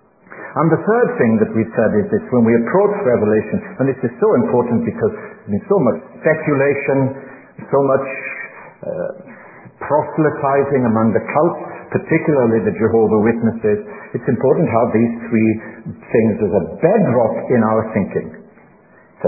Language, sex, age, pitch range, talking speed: English, male, 60-79, 115-160 Hz, 155 wpm